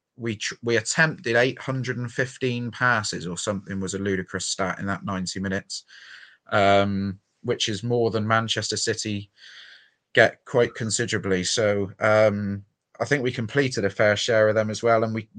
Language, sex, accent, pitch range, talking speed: English, male, British, 105-120 Hz, 155 wpm